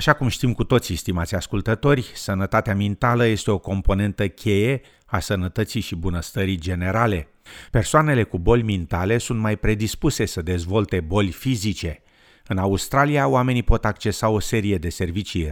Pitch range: 90-115 Hz